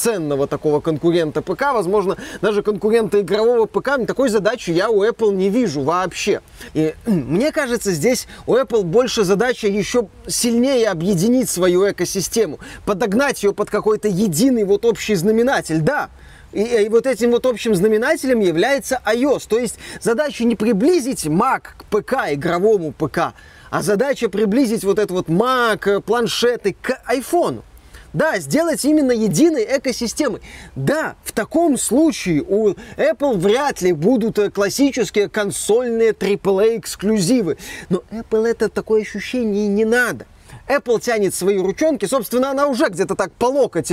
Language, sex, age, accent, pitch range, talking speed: Russian, male, 20-39, native, 200-250 Hz, 140 wpm